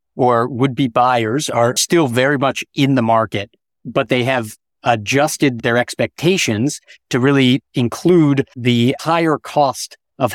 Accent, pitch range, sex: American, 120-140 Hz, male